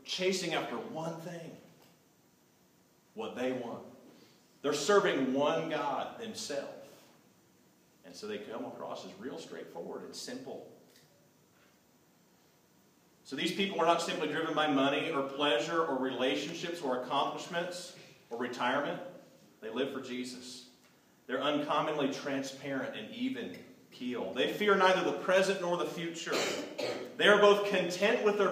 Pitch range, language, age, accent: 130-180 Hz, English, 40-59, American